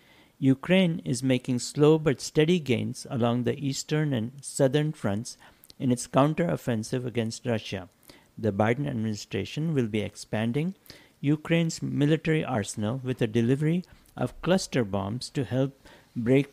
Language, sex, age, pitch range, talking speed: English, male, 60-79, 115-145 Hz, 130 wpm